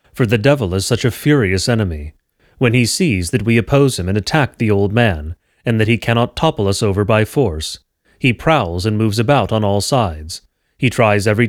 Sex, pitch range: male, 100-125 Hz